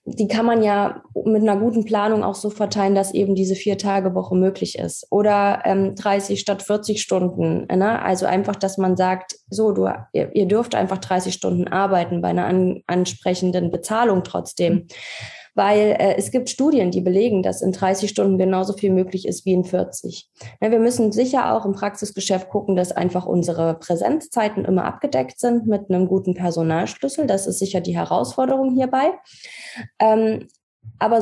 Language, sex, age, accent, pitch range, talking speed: German, female, 20-39, German, 180-210 Hz, 165 wpm